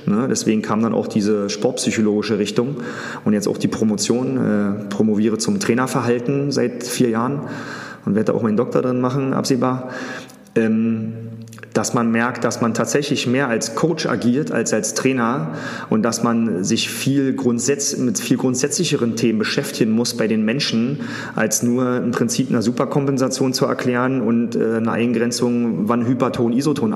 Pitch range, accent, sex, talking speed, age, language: 115-135 Hz, German, male, 155 wpm, 30-49, German